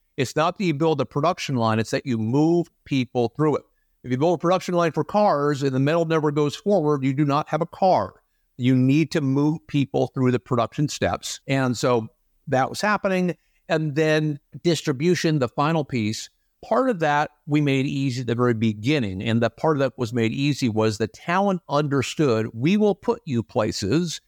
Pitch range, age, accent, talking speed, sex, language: 130-170 Hz, 50-69, American, 205 wpm, male, English